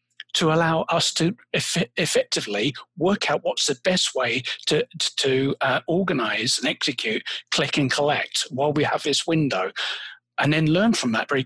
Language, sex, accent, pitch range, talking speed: English, male, British, 145-190 Hz, 170 wpm